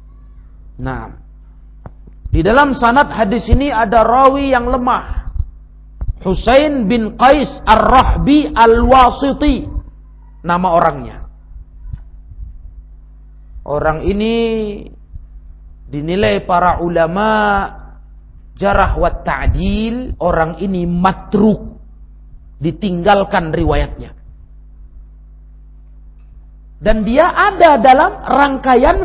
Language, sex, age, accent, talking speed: Indonesian, male, 40-59, native, 70 wpm